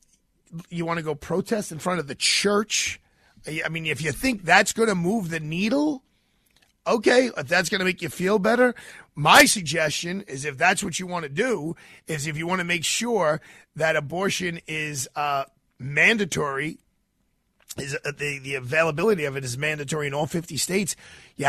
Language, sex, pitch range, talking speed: English, male, 150-210 Hz, 185 wpm